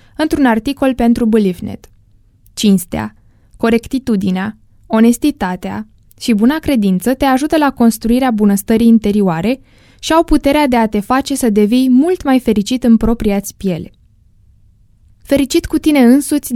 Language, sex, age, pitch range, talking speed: Romanian, female, 20-39, 195-260 Hz, 130 wpm